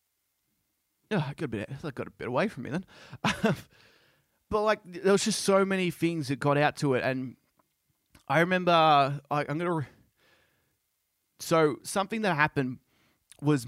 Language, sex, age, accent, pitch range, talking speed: English, male, 20-39, Australian, 130-155 Hz, 170 wpm